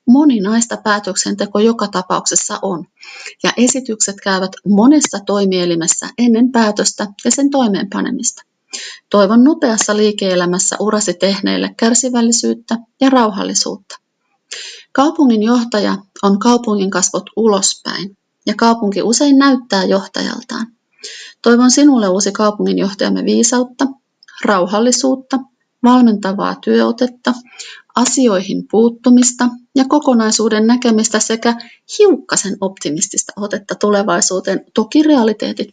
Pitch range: 200-250 Hz